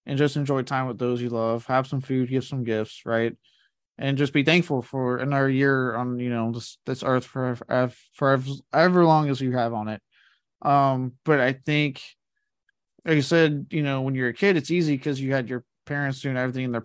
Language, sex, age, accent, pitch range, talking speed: English, male, 20-39, American, 125-145 Hz, 215 wpm